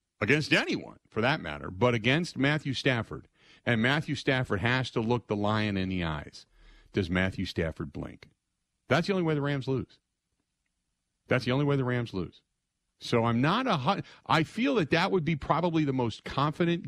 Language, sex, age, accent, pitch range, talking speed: English, male, 50-69, American, 105-140 Hz, 200 wpm